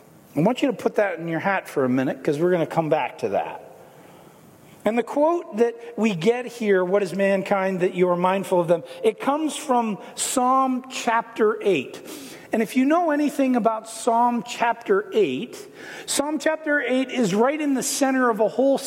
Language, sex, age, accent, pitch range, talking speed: English, male, 50-69, American, 205-260 Hz, 195 wpm